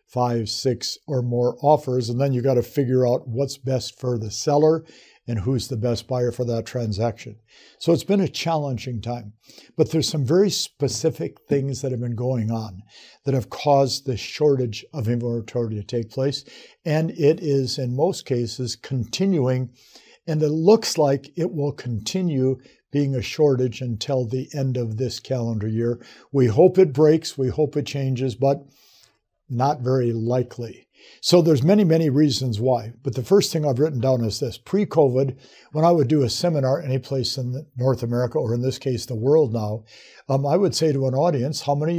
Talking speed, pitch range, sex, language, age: 185 wpm, 125-150 Hz, male, English, 60-79